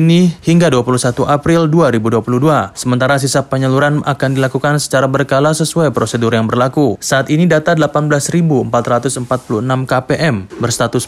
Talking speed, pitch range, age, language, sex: 115 wpm, 120-150 Hz, 20-39, Indonesian, male